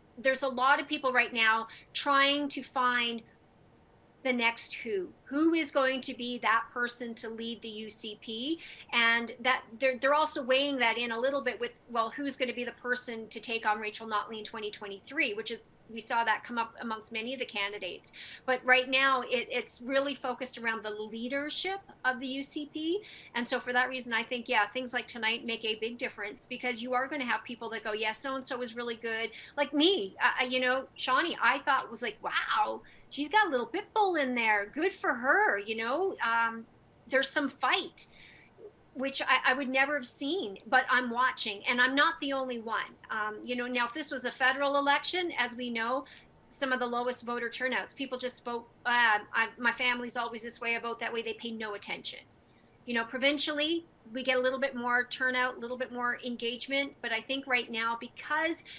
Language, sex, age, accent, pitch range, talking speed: English, female, 40-59, American, 230-270 Hz, 210 wpm